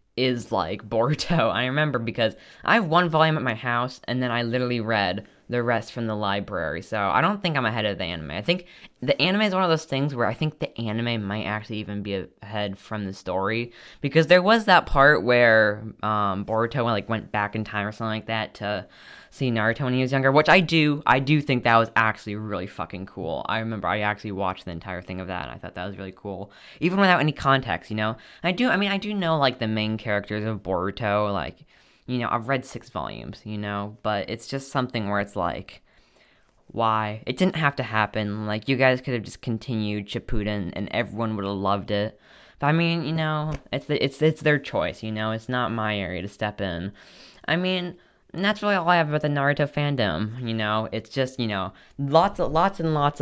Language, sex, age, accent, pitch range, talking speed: English, female, 10-29, American, 105-135 Hz, 230 wpm